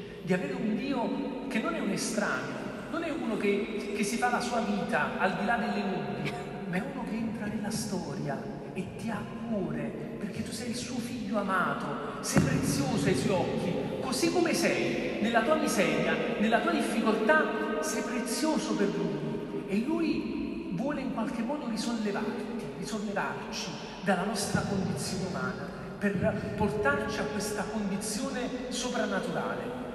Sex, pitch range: male, 195-230 Hz